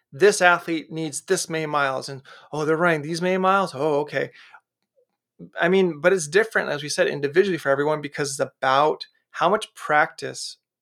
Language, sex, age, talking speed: English, male, 30-49, 175 wpm